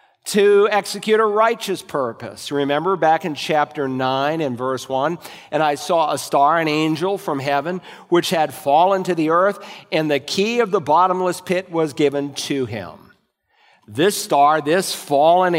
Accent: American